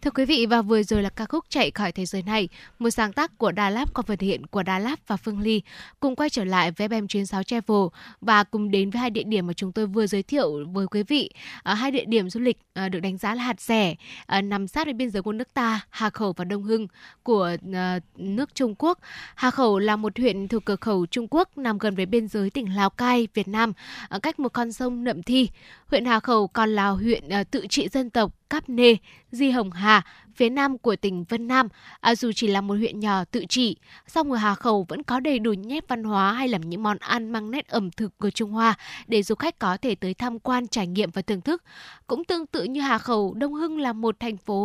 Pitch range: 205-250 Hz